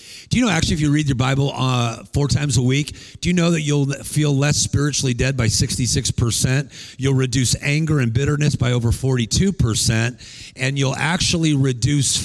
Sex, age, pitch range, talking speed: male, 40-59, 120-150 Hz, 180 wpm